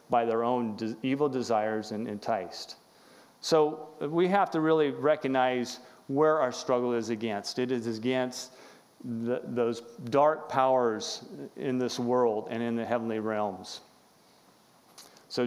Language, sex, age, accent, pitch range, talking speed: English, male, 40-59, American, 115-140 Hz, 130 wpm